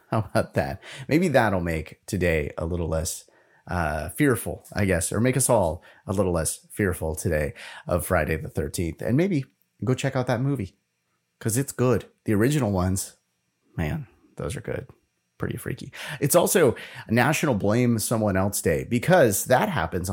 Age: 30-49